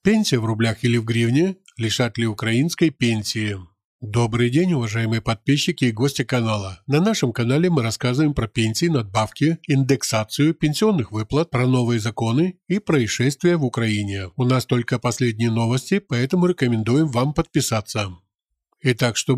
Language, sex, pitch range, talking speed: Ukrainian, male, 115-150 Hz, 140 wpm